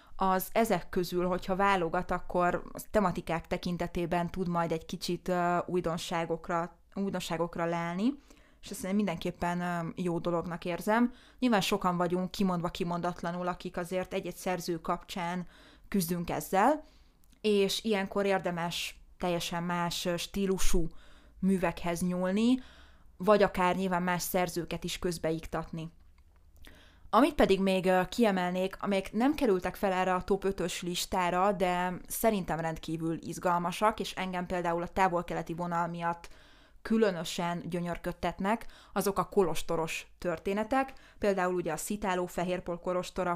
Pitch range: 175-190 Hz